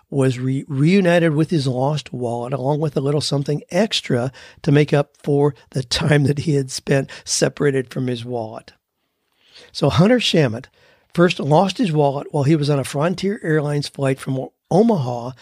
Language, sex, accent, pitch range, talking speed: English, male, American, 135-165 Hz, 170 wpm